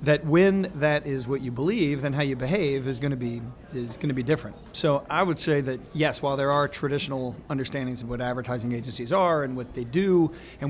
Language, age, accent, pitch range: English, 40-59, American, 130-155 Hz